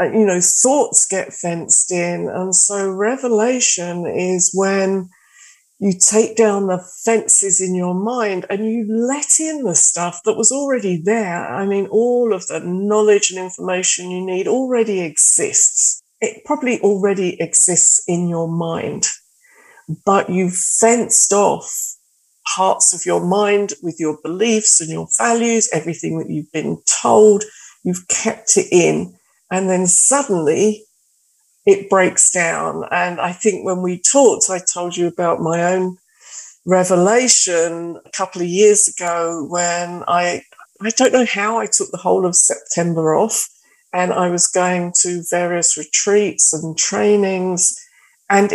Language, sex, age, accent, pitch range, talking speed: English, female, 50-69, British, 175-215 Hz, 145 wpm